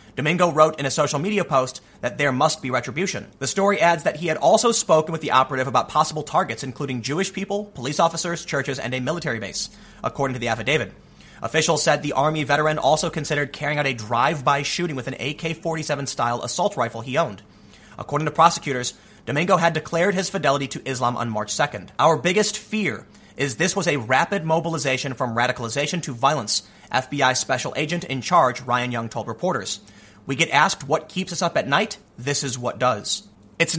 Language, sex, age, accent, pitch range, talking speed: English, male, 30-49, American, 130-170 Hz, 190 wpm